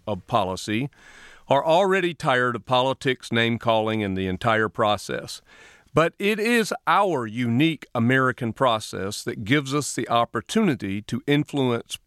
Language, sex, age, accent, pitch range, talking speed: English, male, 40-59, American, 120-160 Hz, 135 wpm